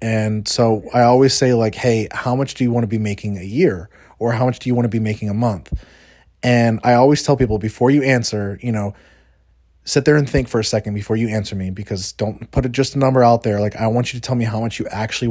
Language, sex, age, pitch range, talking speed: English, male, 30-49, 105-125 Hz, 265 wpm